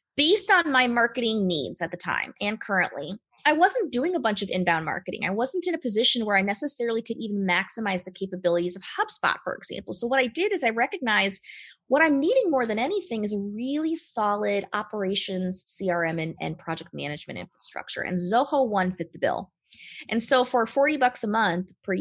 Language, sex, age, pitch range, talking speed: English, female, 20-39, 185-255 Hz, 200 wpm